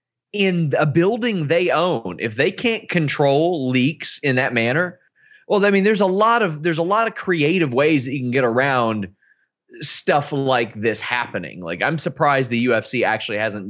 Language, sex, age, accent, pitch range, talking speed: English, male, 30-49, American, 120-190 Hz, 185 wpm